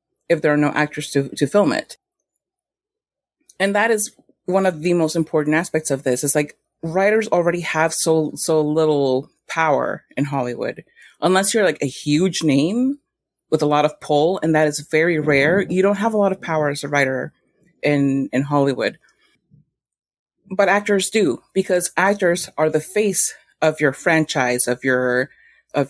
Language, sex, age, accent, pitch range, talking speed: English, female, 30-49, American, 145-185 Hz, 170 wpm